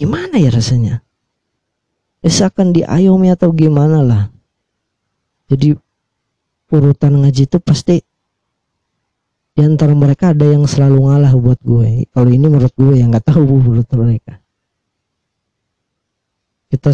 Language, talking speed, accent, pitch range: Indonesian, 115 wpm, native, 120-145 Hz